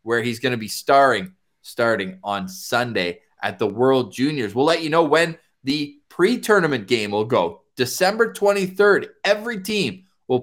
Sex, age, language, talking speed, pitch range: male, 20-39, English, 160 wpm, 130-200 Hz